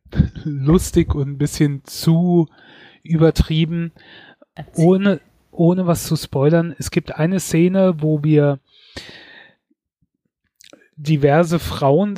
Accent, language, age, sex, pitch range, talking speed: German, German, 30-49, male, 140-170 Hz, 95 wpm